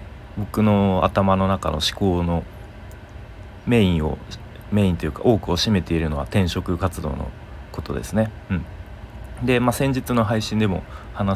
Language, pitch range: Japanese, 85-105 Hz